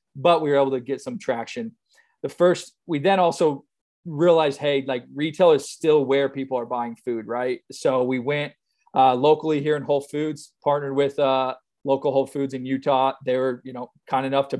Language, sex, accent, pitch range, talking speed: English, male, American, 125-145 Hz, 200 wpm